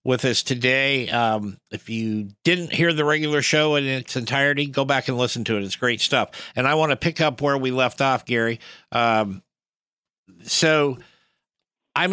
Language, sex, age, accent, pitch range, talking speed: English, male, 50-69, American, 115-135 Hz, 185 wpm